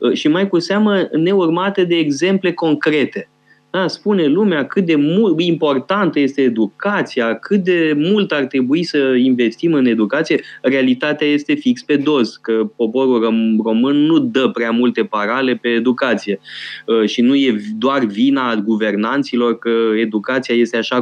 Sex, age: male, 20-39